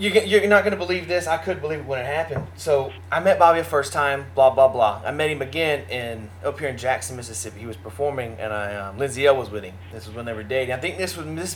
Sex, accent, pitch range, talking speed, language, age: male, American, 90-145 Hz, 285 wpm, English, 20-39